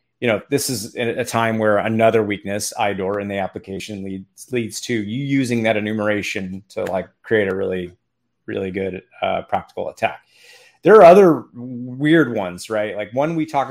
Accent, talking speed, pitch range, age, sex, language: American, 175 wpm, 100-125 Hz, 30-49, male, English